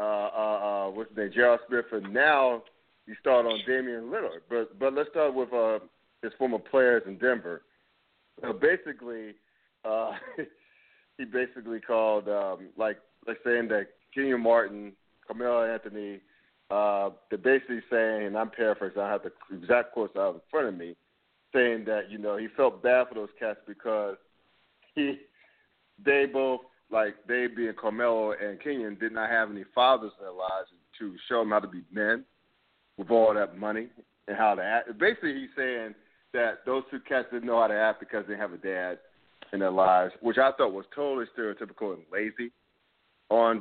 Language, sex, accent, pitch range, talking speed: English, male, American, 105-125 Hz, 180 wpm